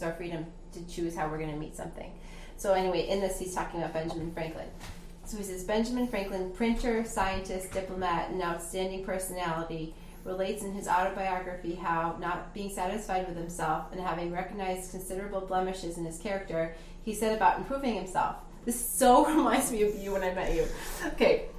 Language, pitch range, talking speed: English, 175-210 Hz, 180 wpm